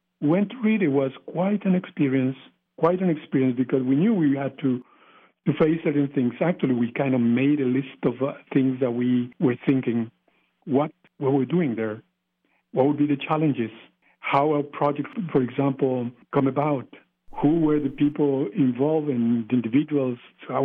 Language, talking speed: English, 175 wpm